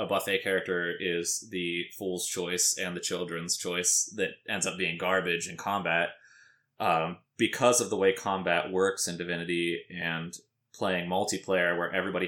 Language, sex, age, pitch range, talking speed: English, male, 20-39, 85-95 Hz, 155 wpm